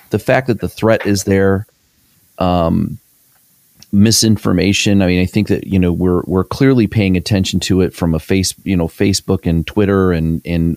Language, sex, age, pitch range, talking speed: English, male, 30-49, 85-105 Hz, 185 wpm